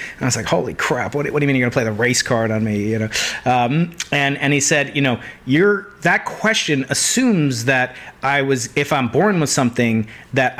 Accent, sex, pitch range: American, male, 125-165 Hz